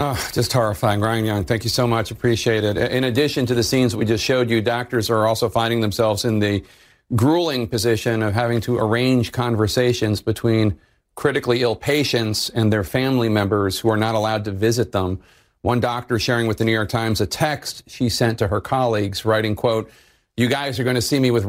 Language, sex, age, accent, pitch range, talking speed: English, male, 40-59, American, 110-125 Hz, 205 wpm